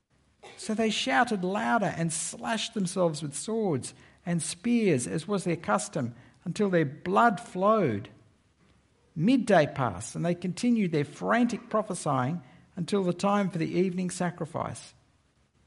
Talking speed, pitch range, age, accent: 130 wpm, 130-210 Hz, 60-79, Australian